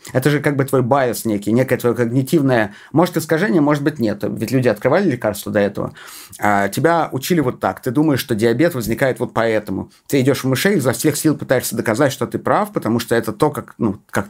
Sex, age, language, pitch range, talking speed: male, 30-49, Russian, 115-150 Hz, 225 wpm